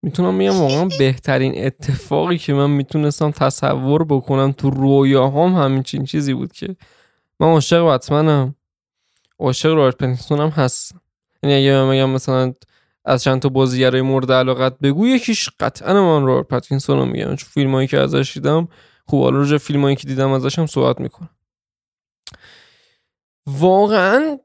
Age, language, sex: 10-29, Persian, male